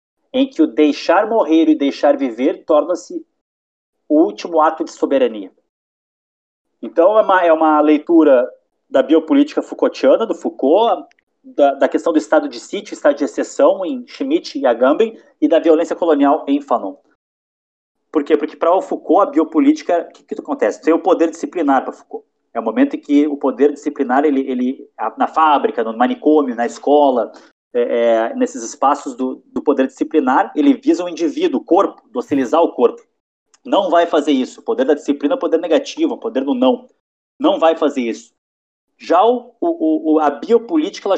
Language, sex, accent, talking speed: Portuguese, male, Brazilian, 175 wpm